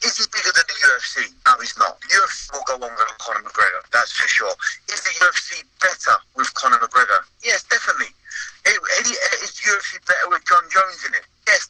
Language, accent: English, British